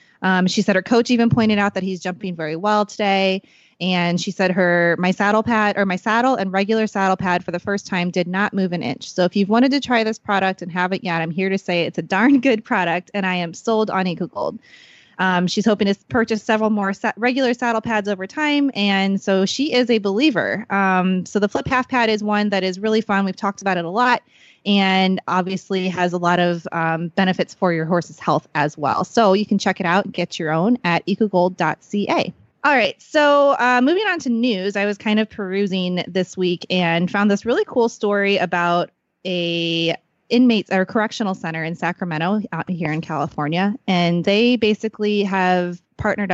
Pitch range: 180-220 Hz